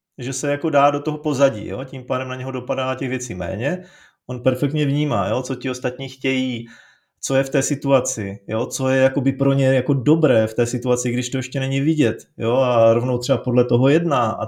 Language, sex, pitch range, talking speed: Czech, male, 120-140 Hz, 225 wpm